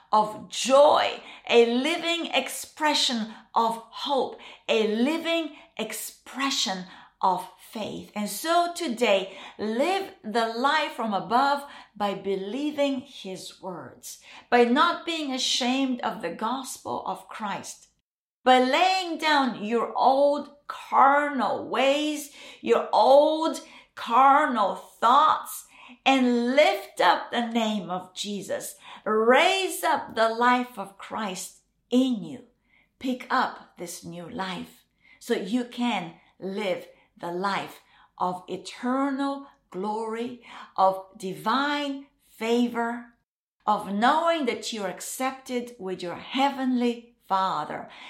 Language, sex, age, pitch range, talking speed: English, female, 50-69, 200-275 Hz, 105 wpm